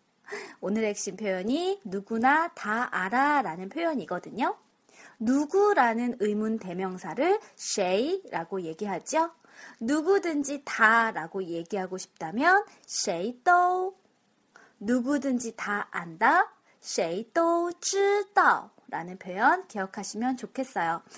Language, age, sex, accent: Korean, 20-39, female, native